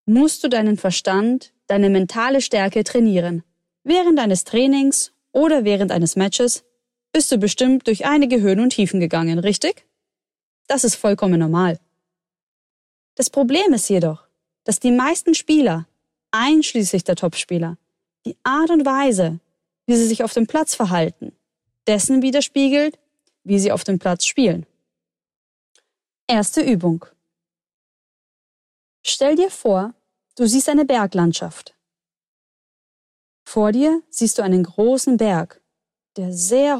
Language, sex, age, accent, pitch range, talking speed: German, female, 20-39, German, 180-265 Hz, 125 wpm